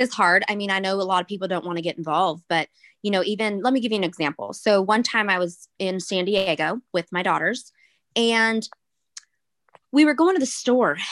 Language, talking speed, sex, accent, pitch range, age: English, 230 wpm, female, American, 175-230 Hz, 20-39